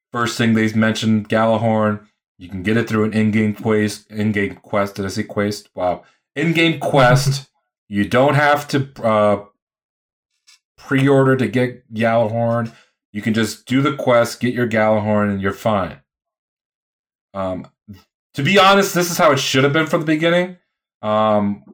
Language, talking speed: English, 160 wpm